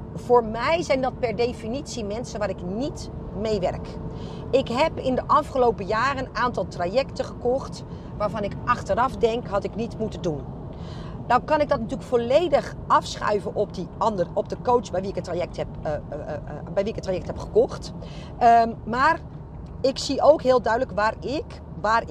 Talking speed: 175 wpm